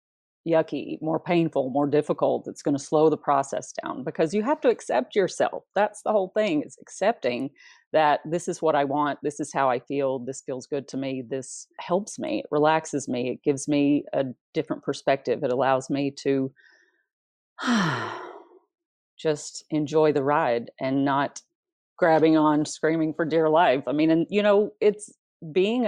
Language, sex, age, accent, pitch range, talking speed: English, female, 40-59, American, 140-180 Hz, 175 wpm